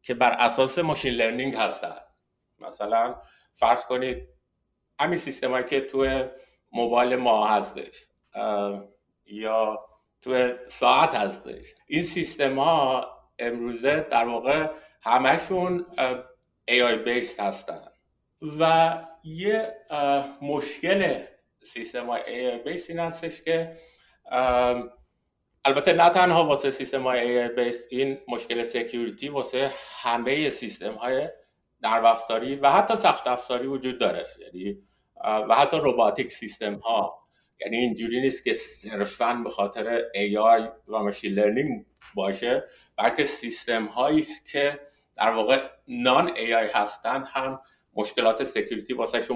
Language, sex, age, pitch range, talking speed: Persian, male, 50-69, 120-160 Hz, 115 wpm